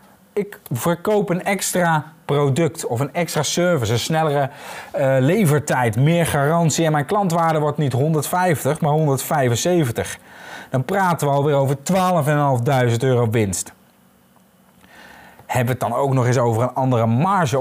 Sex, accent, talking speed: male, Dutch, 140 wpm